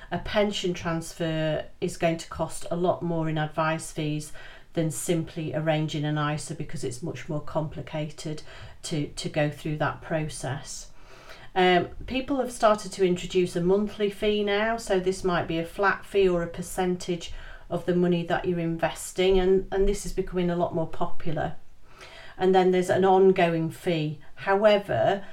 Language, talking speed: English, 170 wpm